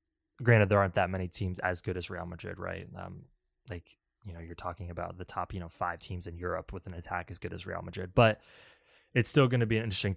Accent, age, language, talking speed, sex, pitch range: American, 20-39, English, 255 wpm, male, 90-110 Hz